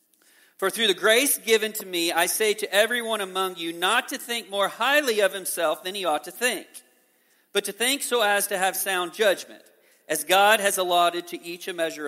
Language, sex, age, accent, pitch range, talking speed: English, male, 40-59, American, 160-230 Hz, 210 wpm